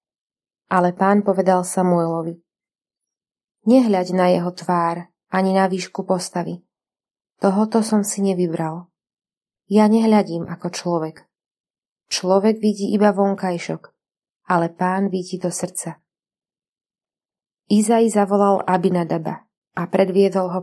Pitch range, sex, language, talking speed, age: 175-205 Hz, female, Slovak, 105 wpm, 20-39